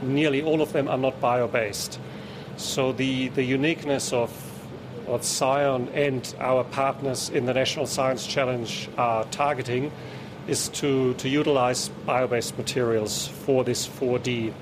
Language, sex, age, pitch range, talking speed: English, male, 40-59, 125-145 Hz, 135 wpm